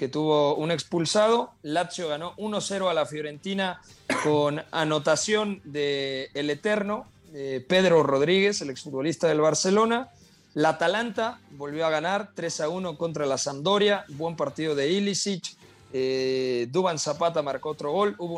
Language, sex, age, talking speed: Spanish, male, 40-59, 135 wpm